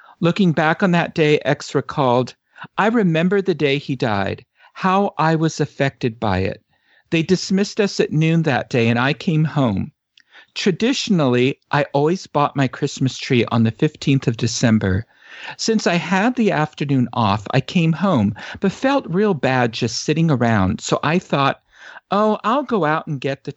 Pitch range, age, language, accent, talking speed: 120-165 Hz, 50-69, English, American, 175 wpm